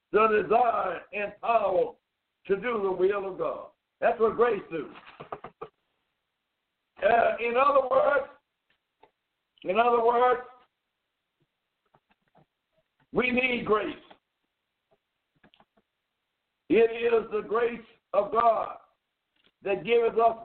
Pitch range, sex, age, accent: 210-240 Hz, male, 60-79, American